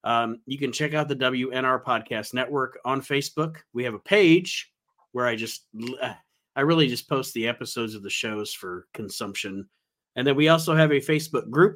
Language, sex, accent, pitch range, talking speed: English, male, American, 125-155 Hz, 185 wpm